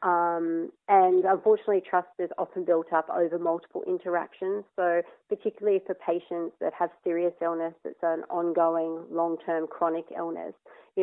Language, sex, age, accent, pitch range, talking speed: English, female, 30-49, Australian, 175-210 Hz, 140 wpm